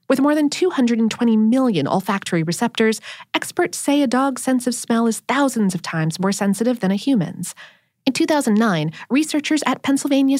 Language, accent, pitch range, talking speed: English, American, 195-280 Hz, 160 wpm